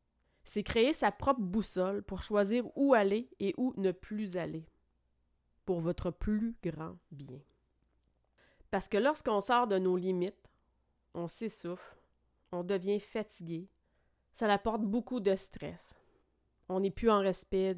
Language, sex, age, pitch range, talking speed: French, female, 30-49, 170-205 Hz, 140 wpm